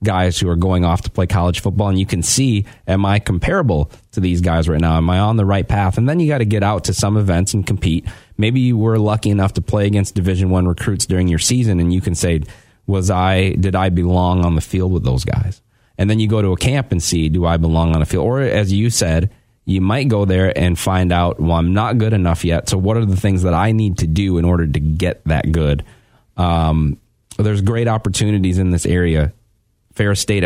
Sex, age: male, 30-49